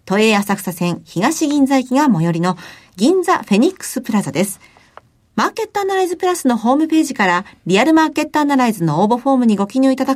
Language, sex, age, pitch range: Japanese, female, 40-59, 185-295 Hz